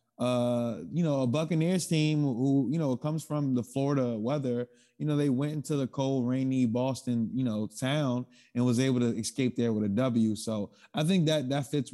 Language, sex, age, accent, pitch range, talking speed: English, male, 20-39, American, 115-140 Hz, 205 wpm